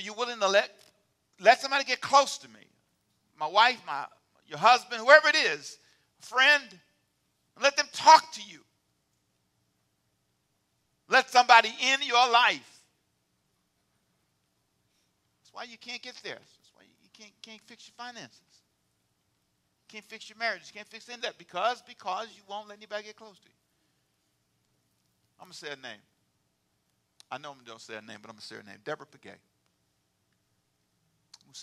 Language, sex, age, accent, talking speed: English, male, 50-69, American, 165 wpm